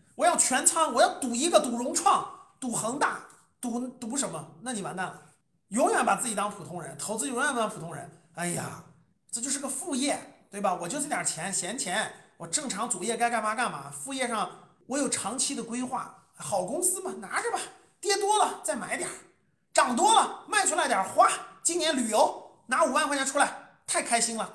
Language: Chinese